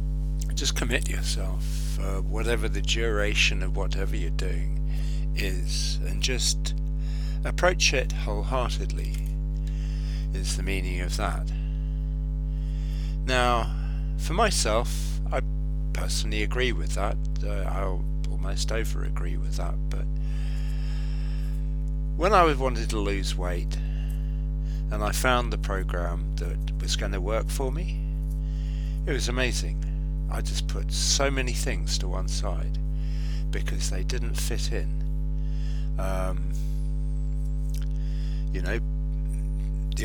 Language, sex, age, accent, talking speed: English, male, 50-69, British, 115 wpm